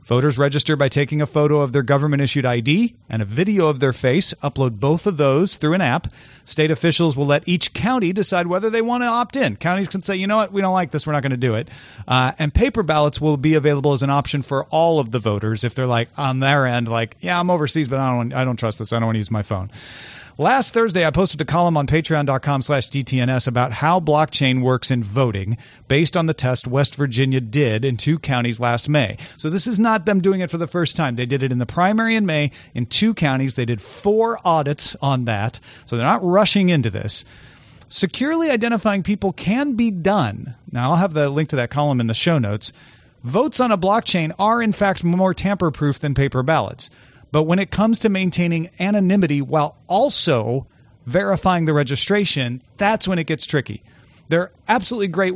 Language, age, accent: English, 40-59, American